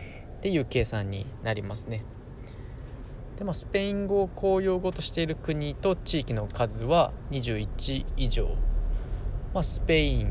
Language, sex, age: Japanese, male, 20-39